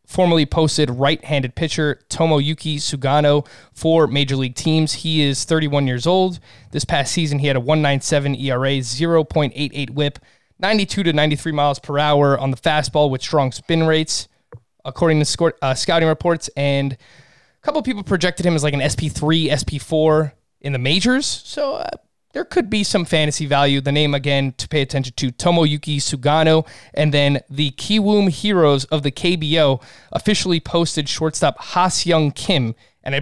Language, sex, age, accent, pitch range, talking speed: English, male, 20-39, American, 135-165 Hz, 165 wpm